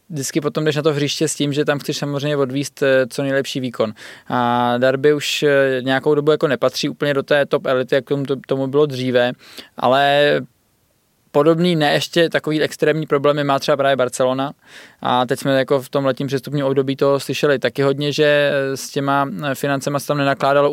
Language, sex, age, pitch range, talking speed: Czech, male, 20-39, 135-150 Hz, 180 wpm